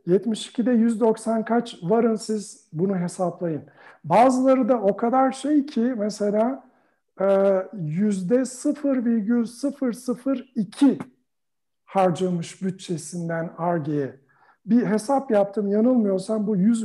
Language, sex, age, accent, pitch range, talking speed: Turkish, male, 60-79, native, 175-235 Hz, 85 wpm